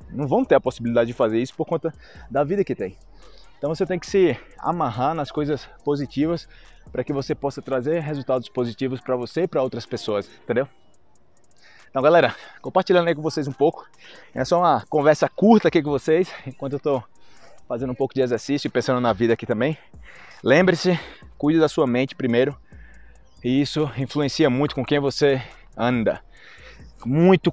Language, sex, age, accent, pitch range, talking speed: Portuguese, male, 20-39, Brazilian, 120-165 Hz, 180 wpm